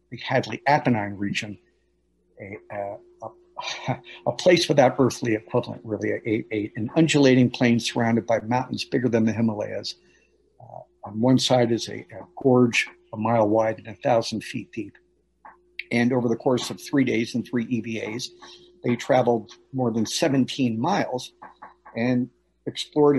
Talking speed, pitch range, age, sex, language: 155 wpm, 110-145 Hz, 50-69, male, English